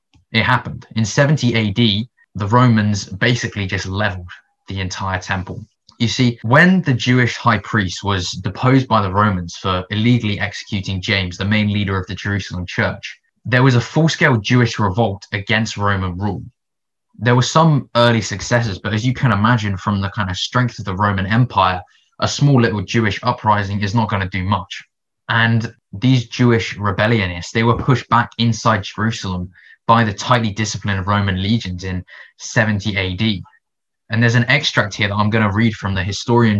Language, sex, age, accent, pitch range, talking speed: English, male, 20-39, British, 100-120 Hz, 175 wpm